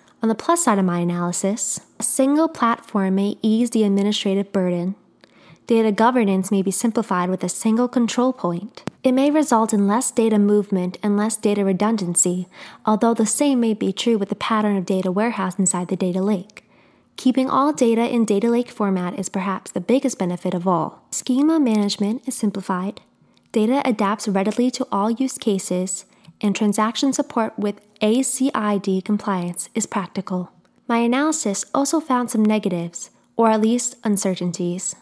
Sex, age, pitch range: female, 20-39, 190-240 Hz